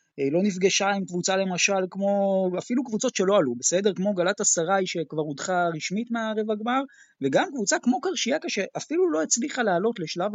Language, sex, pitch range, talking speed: Hebrew, male, 160-235 Hz, 160 wpm